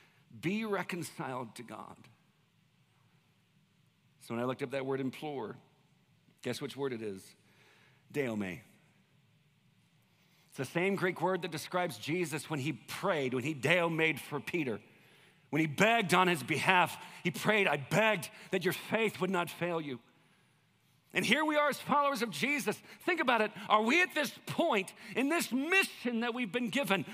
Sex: male